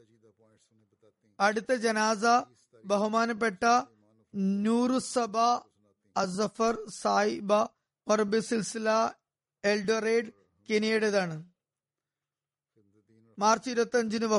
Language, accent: Malayalam, native